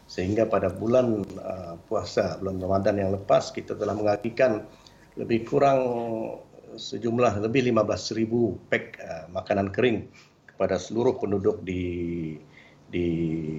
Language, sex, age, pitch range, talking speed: Malay, male, 50-69, 95-115 Hz, 115 wpm